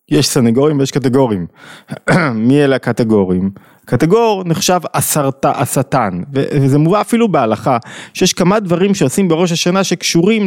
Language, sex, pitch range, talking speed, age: Hebrew, male, 120-165 Hz, 125 wpm, 20-39